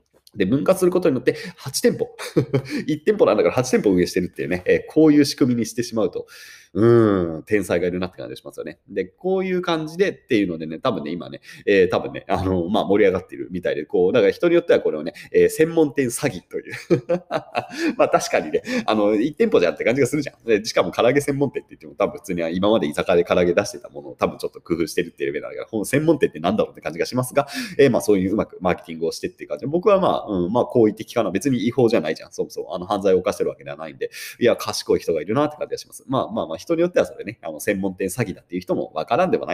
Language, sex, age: Japanese, male, 30-49